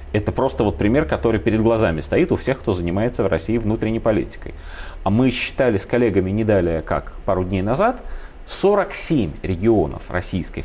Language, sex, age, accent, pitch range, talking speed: Russian, male, 30-49, native, 90-120 Hz, 165 wpm